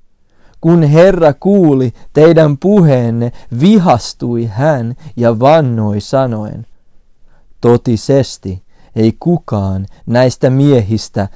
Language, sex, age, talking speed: Finnish, male, 40-59, 80 wpm